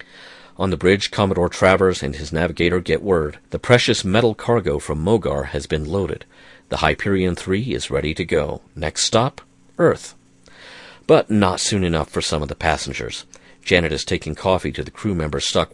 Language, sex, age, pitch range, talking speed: English, male, 50-69, 75-105 Hz, 180 wpm